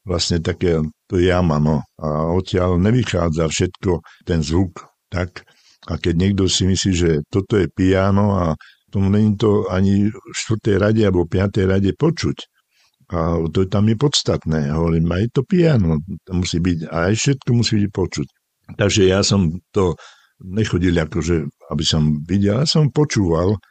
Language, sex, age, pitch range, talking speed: Slovak, male, 60-79, 85-105 Hz, 165 wpm